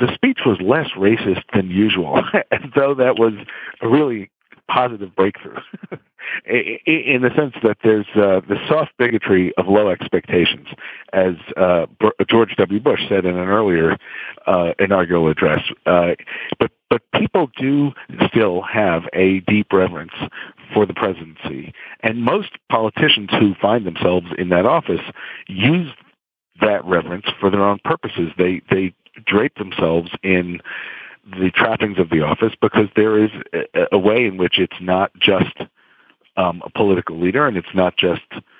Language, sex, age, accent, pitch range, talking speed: English, male, 50-69, American, 90-115 Hz, 150 wpm